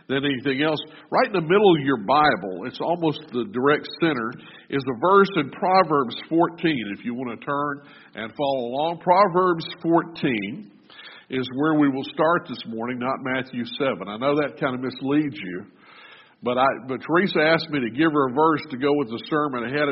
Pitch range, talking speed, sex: 135-190 Hz, 195 wpm, male